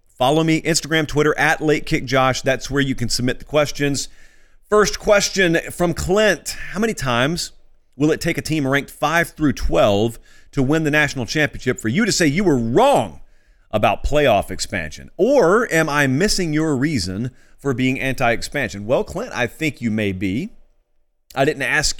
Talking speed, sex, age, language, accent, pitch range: 170 wpm, male, 40-59, English, American, 120-155 Hz